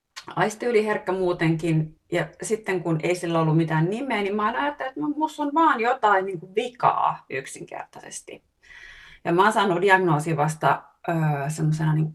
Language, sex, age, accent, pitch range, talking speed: Finnish, female, 30-49, native, 155-210 Hz, 150 wpm